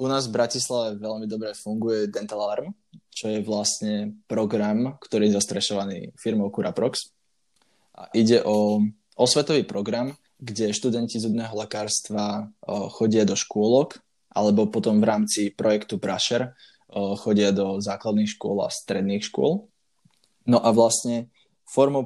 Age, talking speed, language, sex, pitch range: 20-39, 120 wpm, Slovak, male, 100-120 Hz